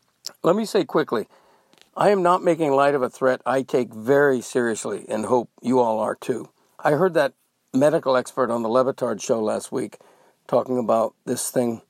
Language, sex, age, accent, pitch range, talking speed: English, male, 60-79, American, 125-150 Hz, 185 wpm